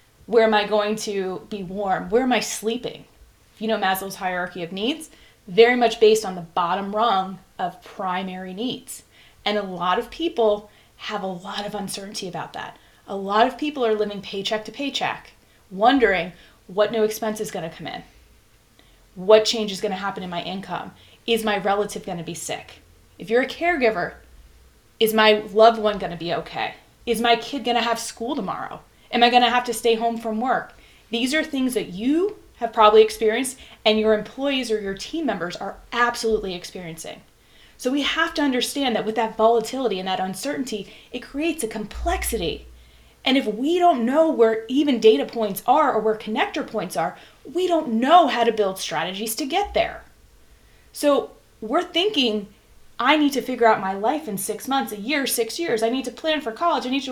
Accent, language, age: American, English, 20-39